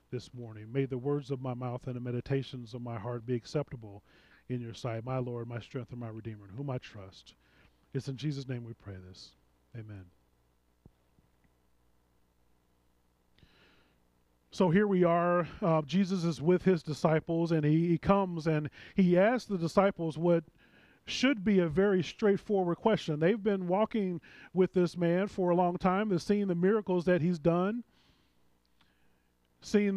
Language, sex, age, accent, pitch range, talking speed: English, male, 30-49, American, 120-185 Hz, 165 wpm